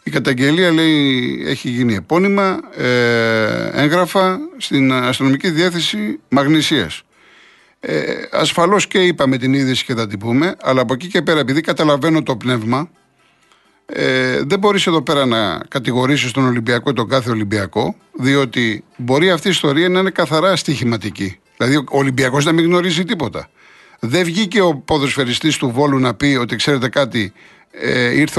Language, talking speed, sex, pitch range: Greek, 150 wpm, male, 130-175 Hz